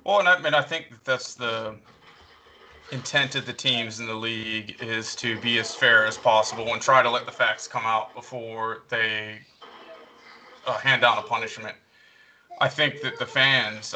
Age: 20-39